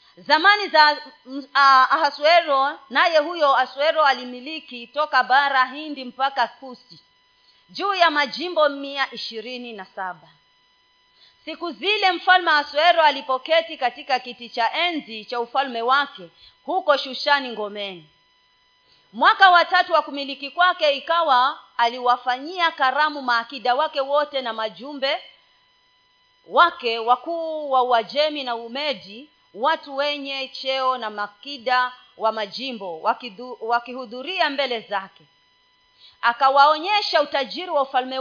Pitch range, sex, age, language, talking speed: 235-310 Hz, female, 40-59, Swahili, 100 wpm